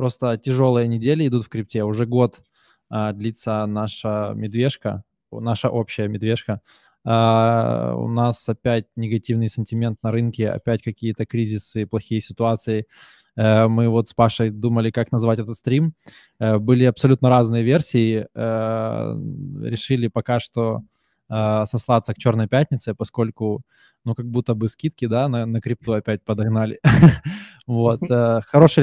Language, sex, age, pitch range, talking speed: Russian, male, 20-39, 110-130 Hz, 125 wpm